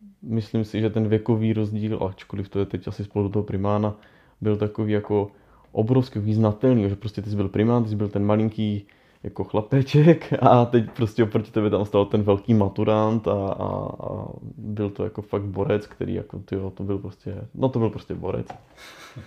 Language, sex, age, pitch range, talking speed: Czech, male, 20-39, 105-120 Hz, 195 wpm